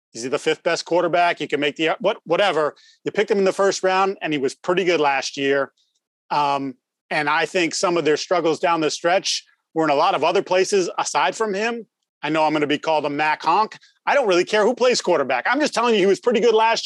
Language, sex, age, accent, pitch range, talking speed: English, male, 30-49, American, 160-200 Hz, 255 wpm